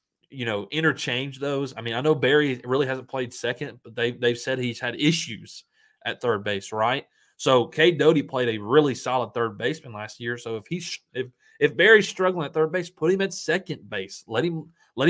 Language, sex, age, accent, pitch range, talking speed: English, male, 30-49, American, 110-155 Hz, 210 wpm